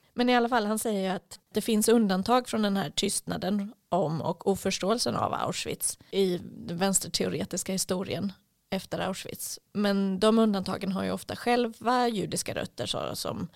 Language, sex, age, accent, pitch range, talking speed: Swedish, female, 30-49, native, 180-205 Hz, 160 wpm